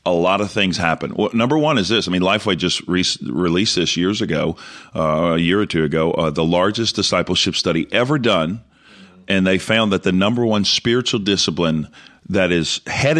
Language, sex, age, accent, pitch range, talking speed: English, male, 40-59, American, 90-105 Hz, 190 wpm